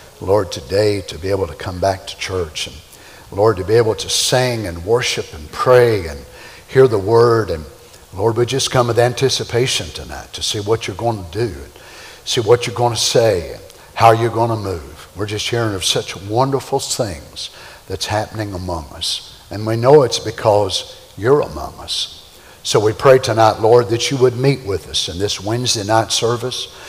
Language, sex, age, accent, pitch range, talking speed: English, male, 60-79, American, 100-125 Hz, 190 wpm